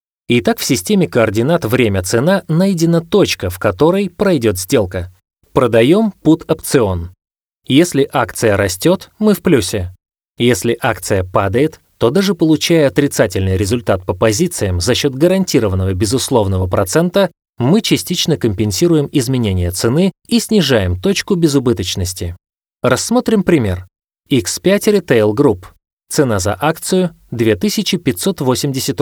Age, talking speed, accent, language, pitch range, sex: 20-39, 110 wpm, native, Russian, 105-165 Hz, male